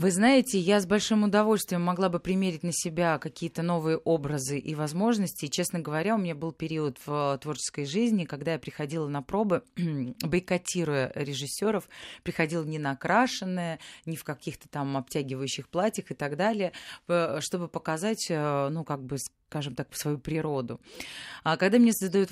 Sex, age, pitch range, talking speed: female, 30-49, 145-190 Hz, 155 wpm